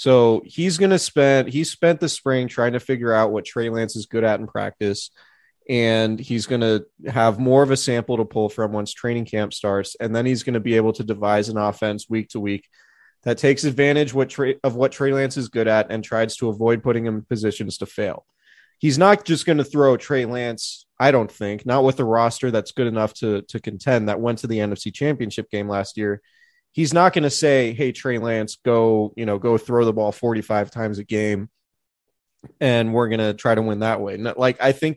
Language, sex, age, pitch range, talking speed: English, male, 20-39, 110-130 Hz, 225 wpm